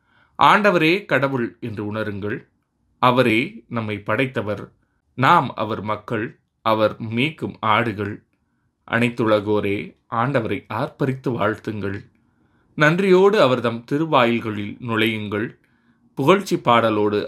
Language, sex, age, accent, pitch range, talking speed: Tamil, male, 20-39, native, 105-125 Hz, 80 wpm